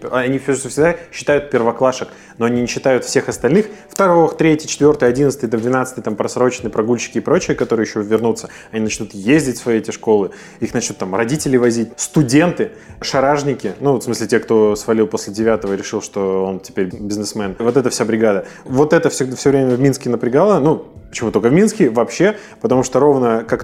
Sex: male